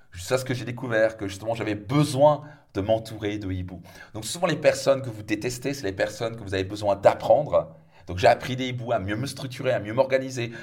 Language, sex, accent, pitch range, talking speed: French, male, French, 110-145 Hz, 230 wpm